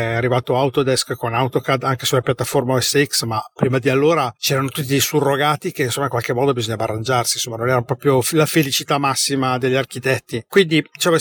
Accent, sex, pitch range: native, male, 130-165 Hz